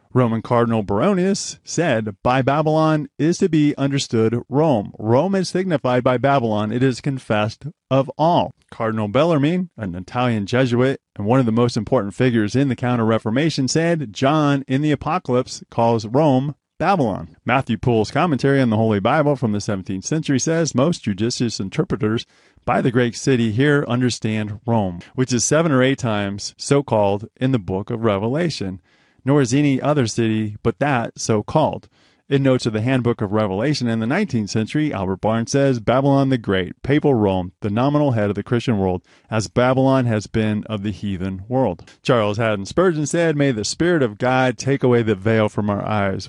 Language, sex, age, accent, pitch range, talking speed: English, male, 30-49, American, 110-140 Hz, 175 wpm